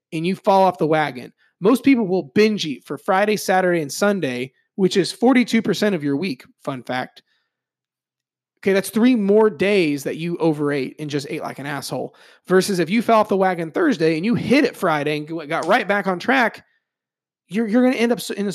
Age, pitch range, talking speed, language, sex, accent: 30-49, 150-205 Hz, 205 wpm, English, male, American